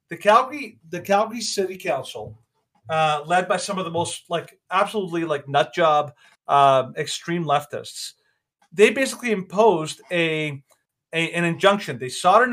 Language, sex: English, male